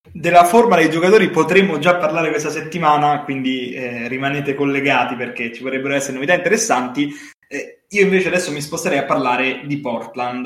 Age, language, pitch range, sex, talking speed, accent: 20-39, Italian, 130-155 Hz, male, 165 wpm, native